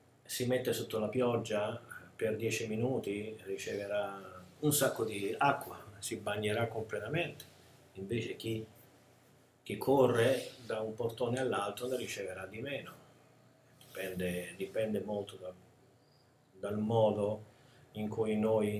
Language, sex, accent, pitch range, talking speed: Italian, male, native, 105-125 Hz, 115 wpm